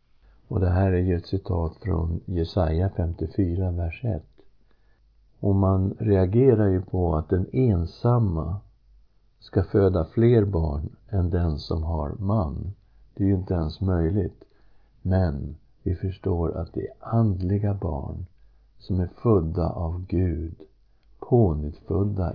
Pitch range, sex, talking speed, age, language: 85-110 Hz, male, 135 wpm, 50-69, Swedish